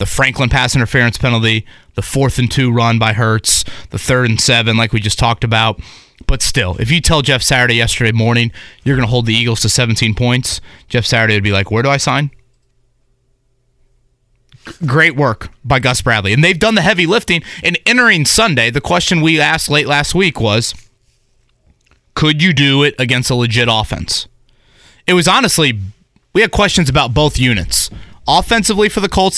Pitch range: 110-140 Hz